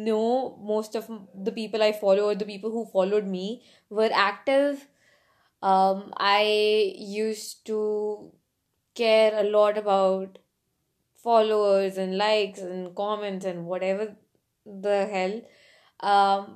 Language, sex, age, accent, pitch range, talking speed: English, female, 20-39, Indian, 200-235 Hz, 120 wpm